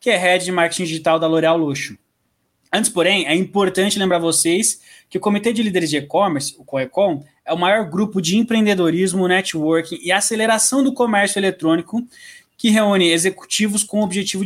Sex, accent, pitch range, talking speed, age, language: male, Brazilian, 155-200 Hz, 175 wpm, 20-39, Portuguese